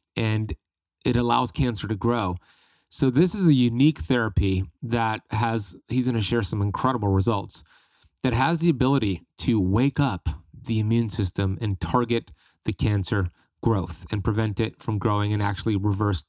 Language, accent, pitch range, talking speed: English, American, 105-125 Hz, 160 wpm